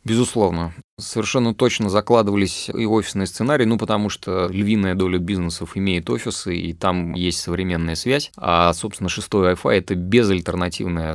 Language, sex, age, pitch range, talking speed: Russian, male, 30-49, 95-115 Hz, 140 wpm